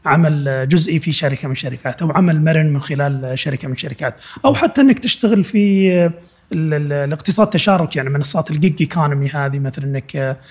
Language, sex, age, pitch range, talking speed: Arabic, male, 30-49, 135-175 Hz, 160 wpm